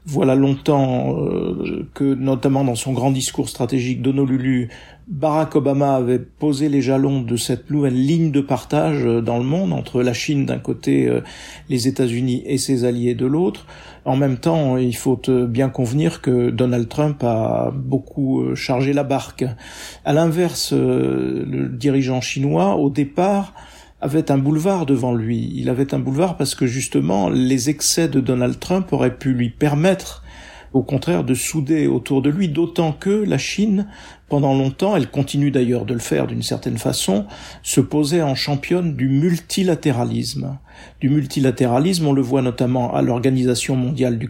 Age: 50-69